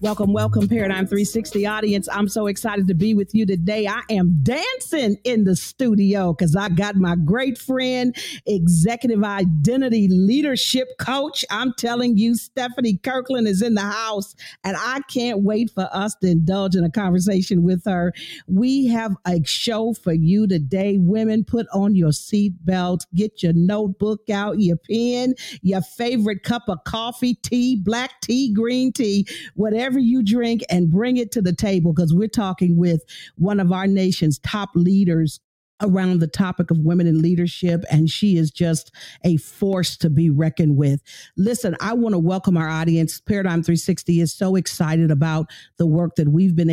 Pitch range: 170-220 Hz